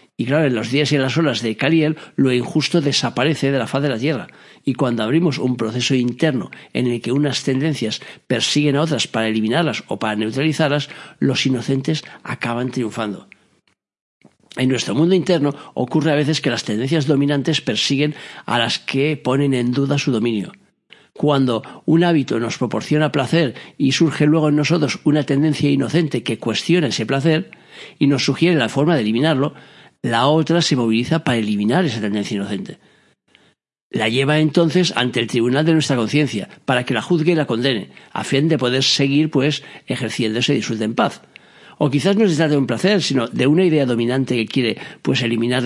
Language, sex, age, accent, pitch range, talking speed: Spanish, male, 60-79, Spanish, 125-155 Hz, 185 wpm